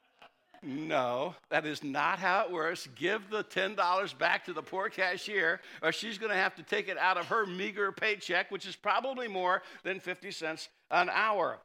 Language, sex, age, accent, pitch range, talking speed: English, male, 60-79, American, 180-235 Hz, 190 wpm